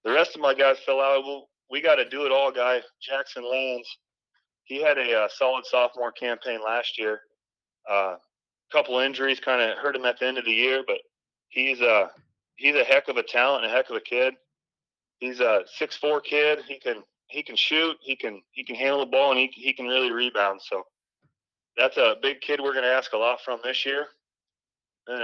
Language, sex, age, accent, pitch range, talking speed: English, male, 30-49, American, 125-145 Hz, 215 wpm